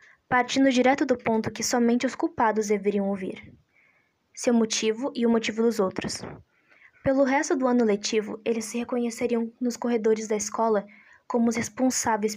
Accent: Brazilian